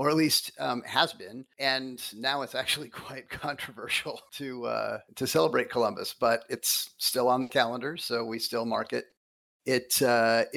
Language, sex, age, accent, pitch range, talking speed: English, male, 40-59, American, 110-140 Hz, 170 wpm